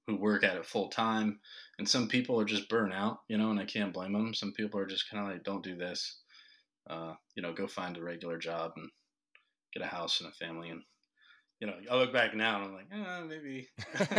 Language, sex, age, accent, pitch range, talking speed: English, male, 20-39, American, 95-110 Hz, 240 wpm